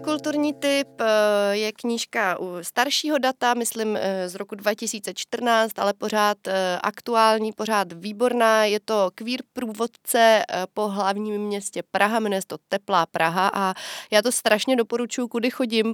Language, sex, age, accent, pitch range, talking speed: Czech, female, 30-49, native, 190-230 Hz, 130 wpm